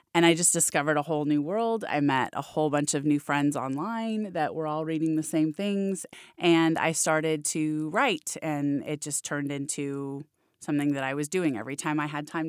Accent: American